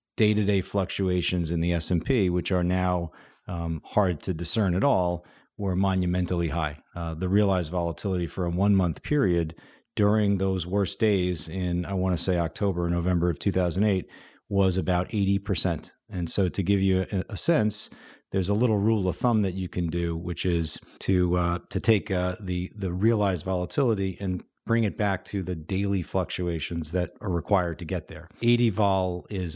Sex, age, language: male, 40-59, English